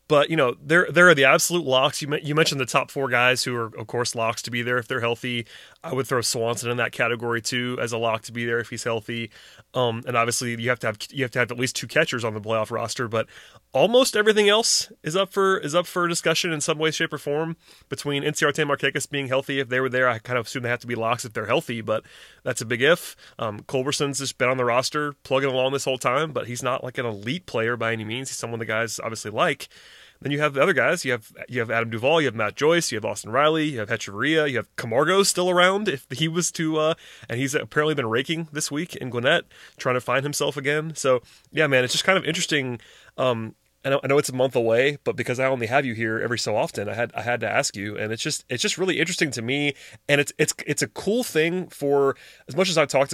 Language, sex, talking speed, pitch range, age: English, male, 265 wpm, 120-150 Hz, 30-49